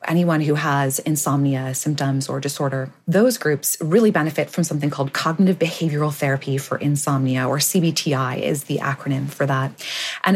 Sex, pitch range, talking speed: female, 140-180 Hz, 155 wpm